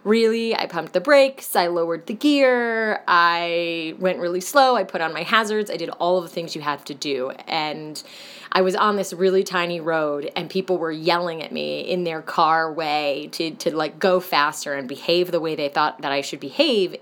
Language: English